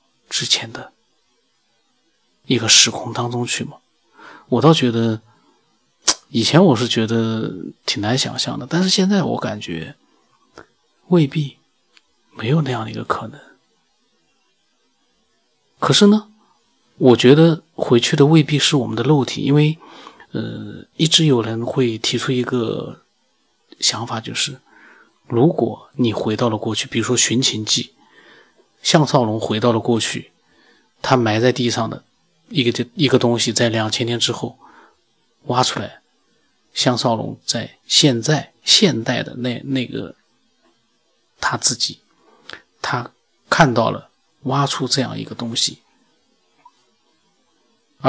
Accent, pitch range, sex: native, 120-150 Hz, male